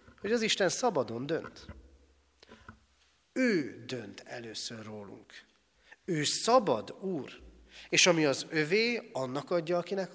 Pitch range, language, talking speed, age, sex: 125-190 Hz, Hungarian, 110 wpm, 30-49, male